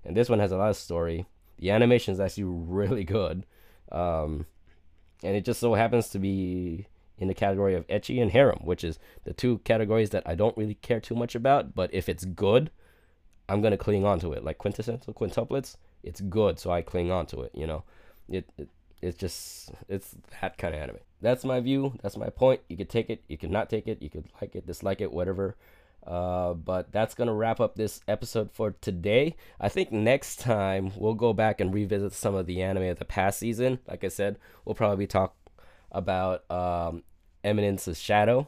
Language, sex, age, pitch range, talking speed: English, male, 20-39, 85-105 Hz, 205 wpm